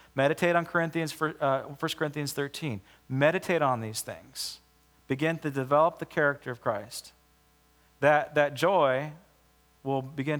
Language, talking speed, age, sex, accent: English, 135 wpm, 40-59, male, American